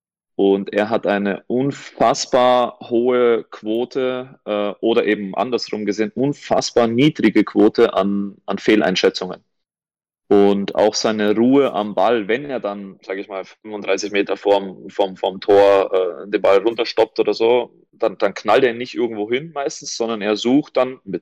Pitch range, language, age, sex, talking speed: 95-115 Hz, German, 30-49, male, 155 wpm